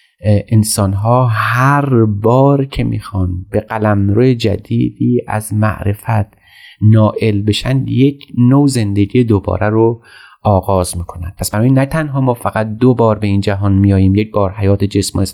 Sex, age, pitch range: male, 30-49, 100-125 Hz